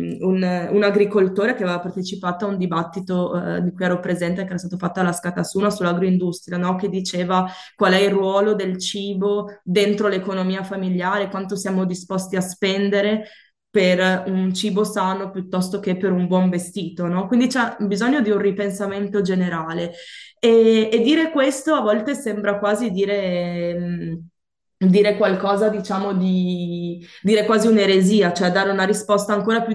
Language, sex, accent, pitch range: Italian, female, native, 180-205 Hz